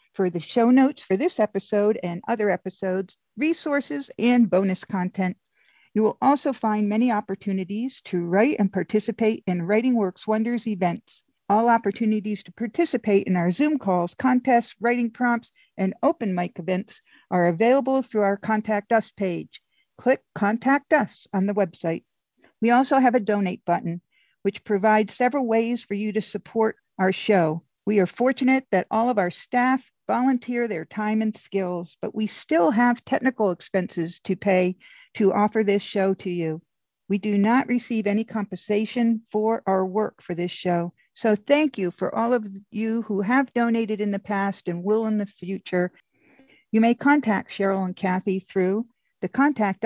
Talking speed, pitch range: 165 wpm, 190-245 Hz